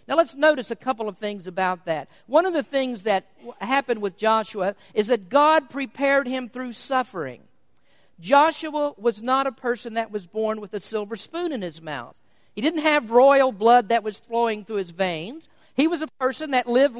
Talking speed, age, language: 200 wpm, 50-69, English